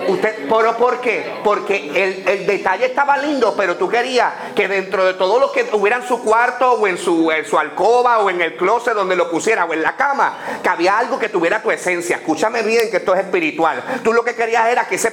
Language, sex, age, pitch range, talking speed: Spanish, male, 40-59, 190-255 Hz, 240 wpm